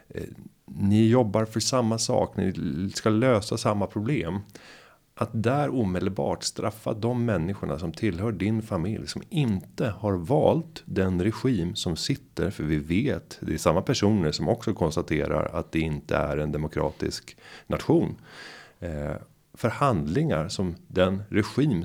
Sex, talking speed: male, 135 wpm